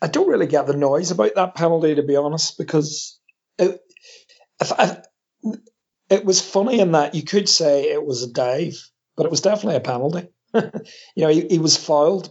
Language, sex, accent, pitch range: English, male, British, 135-175 Hz